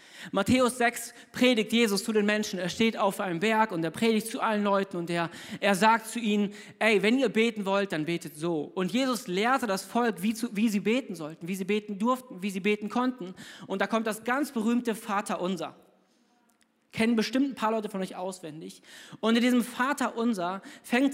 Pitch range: 190-240 Hz